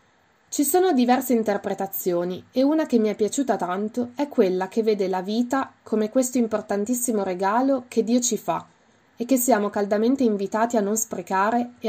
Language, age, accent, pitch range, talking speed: Italian, 20-39, native, 200-245 Hz, 170 wpm